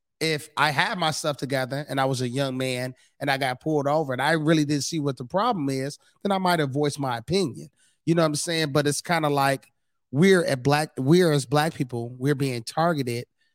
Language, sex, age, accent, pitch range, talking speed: English, male, 30-49, American, 135-180 Hz, 230 wpm